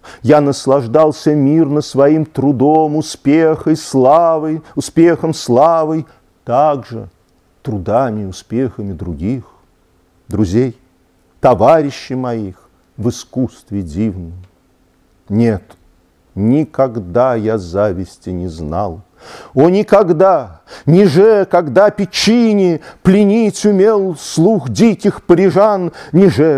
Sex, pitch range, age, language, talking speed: male, 95-155 Hz, 40-59, Russian, 80 wpm